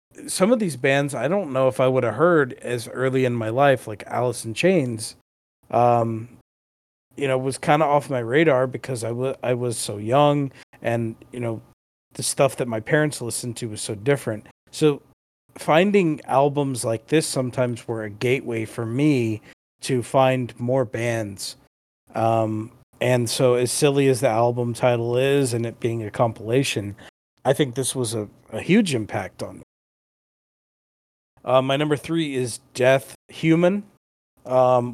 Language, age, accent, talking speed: English, 40-59, American, 170 wpm